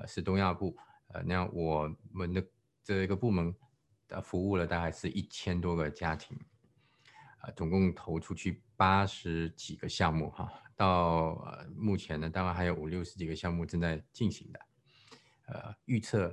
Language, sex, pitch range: Chinese, male, 80-100 Hz